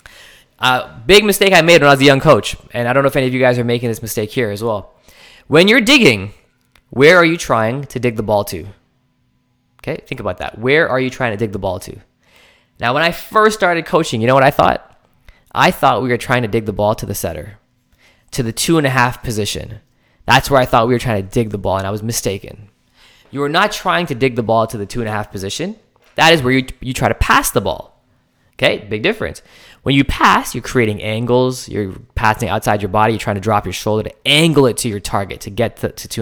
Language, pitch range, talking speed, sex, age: English, 110-150 Hz, 255 wpm, male, 20-39